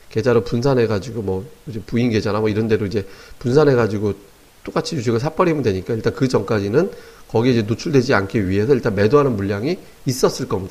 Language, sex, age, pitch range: Korean, male, 40-59, 105-150 Hz